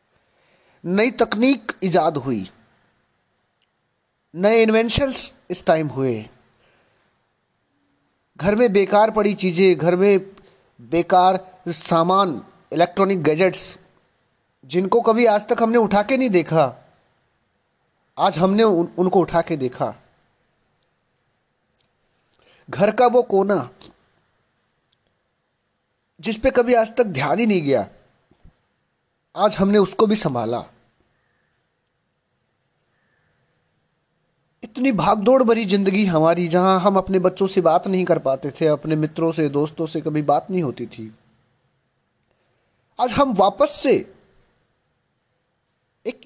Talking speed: 110 wpm